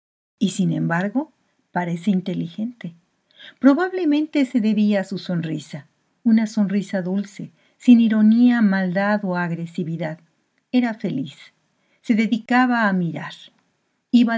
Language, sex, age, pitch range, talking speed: Spanish, female, 50-69, 180-230 Hz, 110 wpm